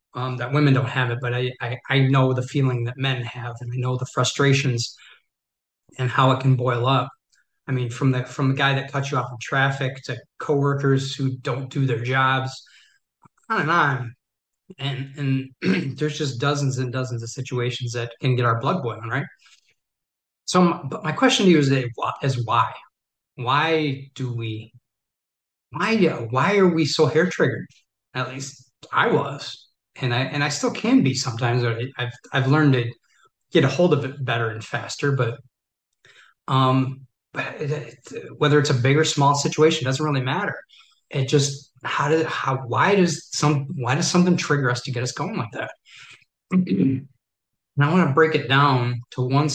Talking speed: 190 wpm